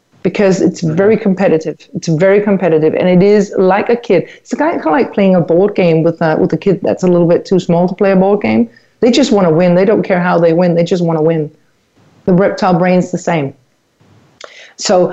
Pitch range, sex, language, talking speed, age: 170-195 Hz, female, English, 235 wpm, 40-59